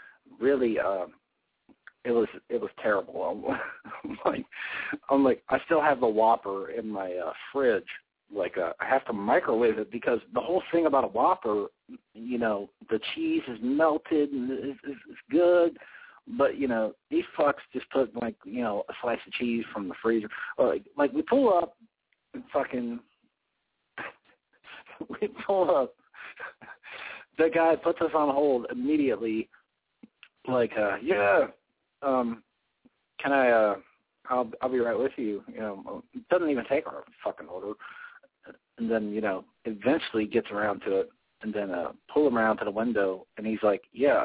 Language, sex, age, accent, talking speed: English, male, 50-69, American, 170 wpm